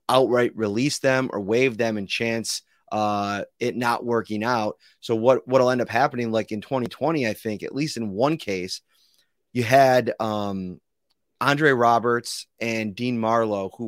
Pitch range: 105-125 Hz